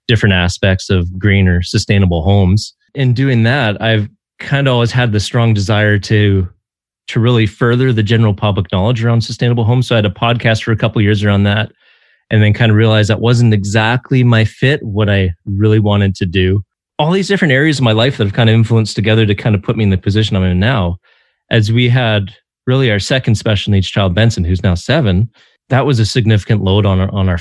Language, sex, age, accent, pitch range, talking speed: English, male, 30-49, American, 95-115 Hz, 225 wpm